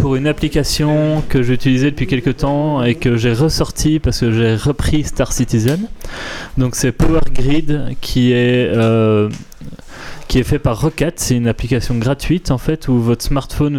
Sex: male